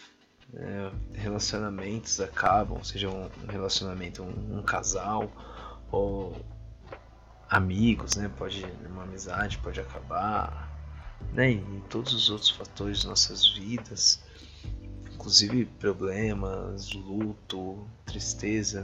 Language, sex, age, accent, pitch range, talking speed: Portuguese, male, 20-39, Brazilian, 95-110 Hz, 100 wpm